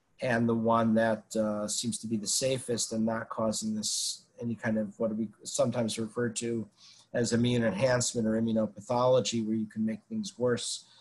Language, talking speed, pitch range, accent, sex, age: English, 180 wpm, 115-140 Hz, American, male, 50-69